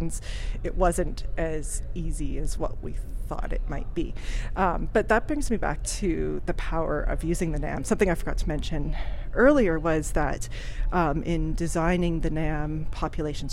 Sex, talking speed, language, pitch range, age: female, 170 wpm, English, 150-175 Hz, 30-49